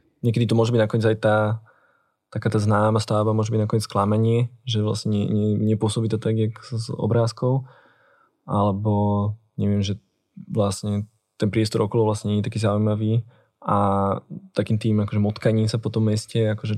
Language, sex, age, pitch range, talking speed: Slovak, male, 20-39, 110-120 Hz, 160 wpm